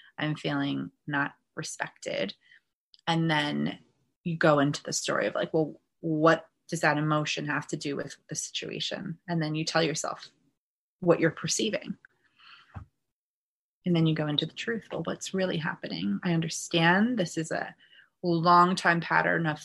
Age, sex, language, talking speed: 20-39, female, English, 160 wpm